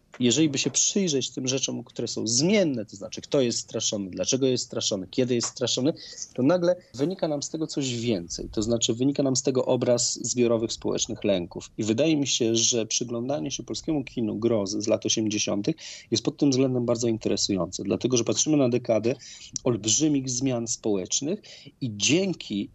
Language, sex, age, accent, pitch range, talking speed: Polish, male, 40-59, native, 110-150 Hz, 175 wpm